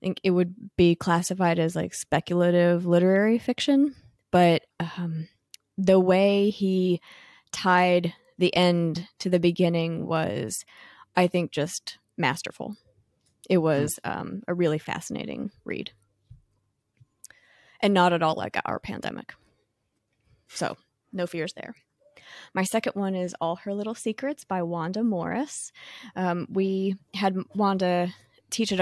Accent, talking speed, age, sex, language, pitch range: American, 125 wpm, 20-39, female, English, 165-190 Hz